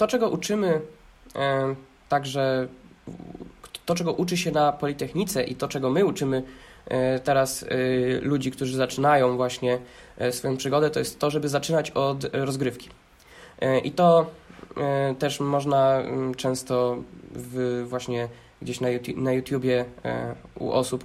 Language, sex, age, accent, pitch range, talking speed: Polish, male, 20-39, native, 130-155 Hz, 115 wpm